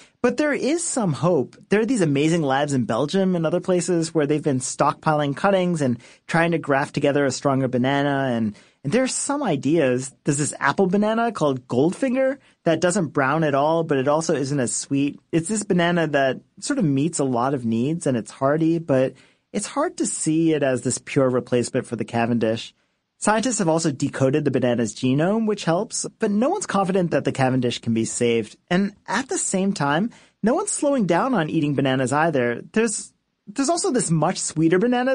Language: English